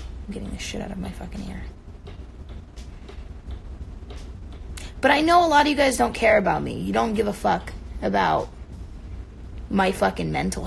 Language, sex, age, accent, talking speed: English, female, 20-39, American, 170 wpm